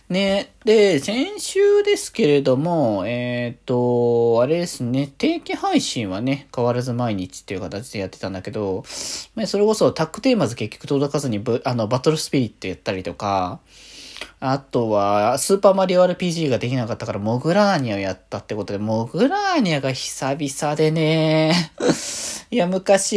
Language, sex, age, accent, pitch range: Japanese, male, 20-39, native, 110-175 Hz